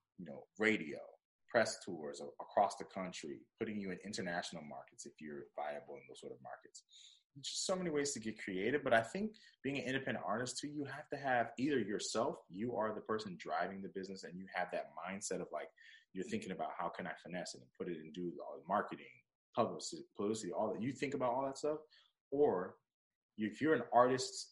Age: 30-49